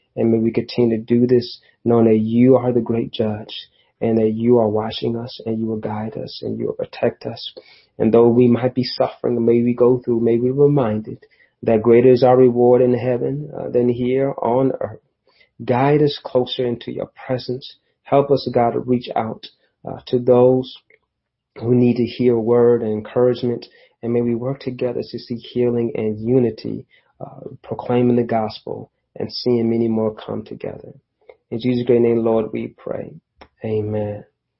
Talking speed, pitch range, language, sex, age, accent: 185 wpm, 110-125 Hz, English, male, 30-49, American